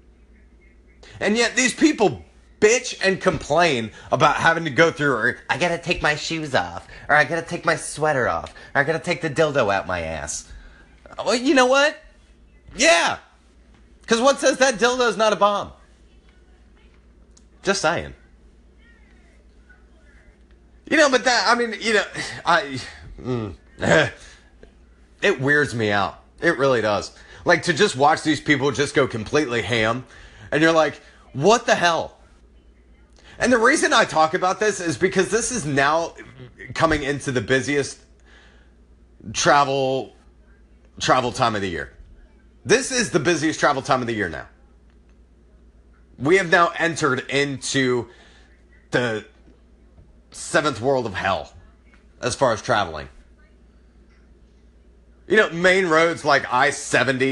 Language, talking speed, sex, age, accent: English, 140 wpm, male, 30-49, American